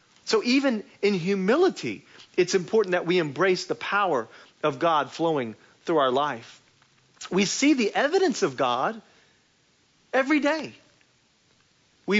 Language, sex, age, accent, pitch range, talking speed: English, male, 40-59, American, 165-245 Hz, 130 wpm